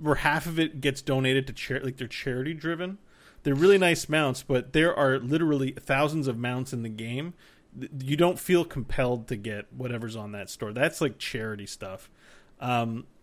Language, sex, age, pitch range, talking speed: English, male, 30-49, 115-150 Hz, 180 wpm